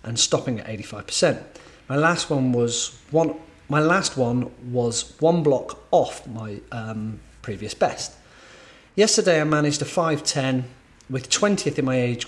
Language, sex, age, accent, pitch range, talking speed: English, male, 40-59, British, 125-160 Hz, 140 wpm